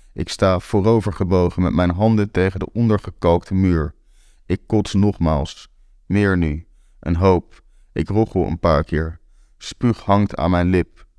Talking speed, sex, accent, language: 145 wpm, male, Dutch, Dutch